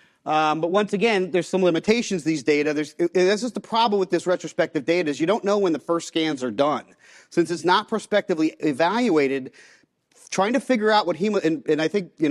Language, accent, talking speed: English, American, 215 wpm